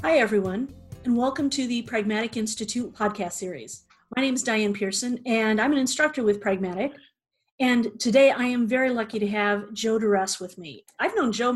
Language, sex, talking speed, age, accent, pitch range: English, female, 185 wpm, 40-59, American, 205-240 Hz